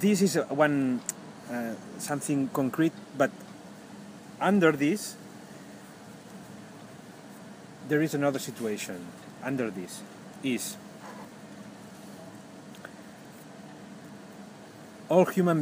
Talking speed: 65 wpm